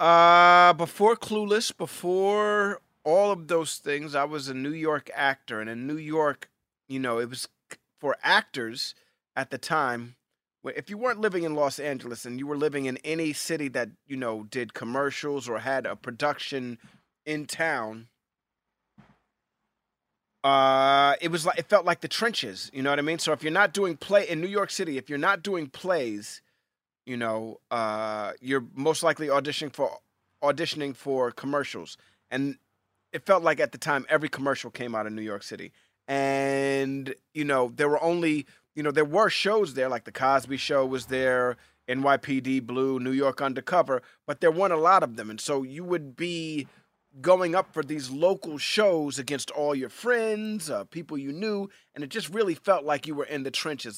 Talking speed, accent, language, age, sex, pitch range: 185 wpm, American, English, 30-49, male, 130-170 Hz